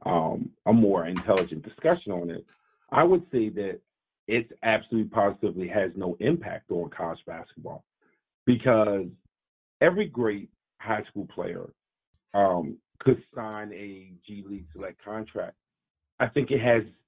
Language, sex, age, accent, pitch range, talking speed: English, male, 40-59, American, 105-125 Hz, 135 wpm